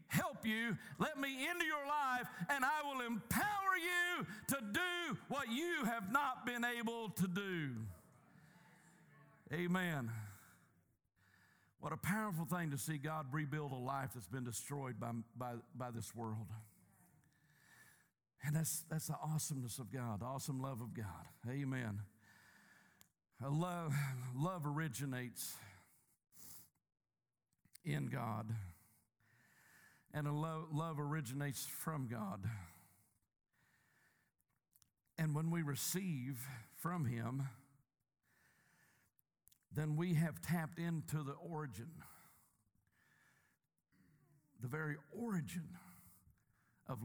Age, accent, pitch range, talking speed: 50-69, American, 125-180 Hz, 105 wpm